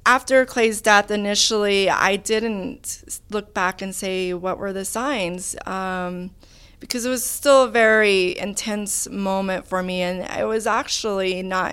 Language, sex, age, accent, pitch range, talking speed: English, female, 30-49, American, 180-205 Hz, 155 wpm